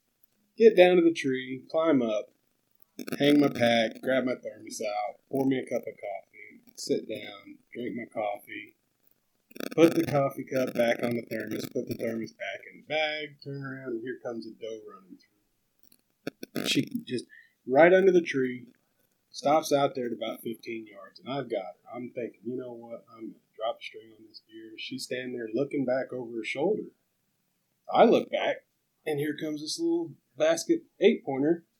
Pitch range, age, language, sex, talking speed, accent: 125-190 Hz, 30-49, English, male, 185 wpm, American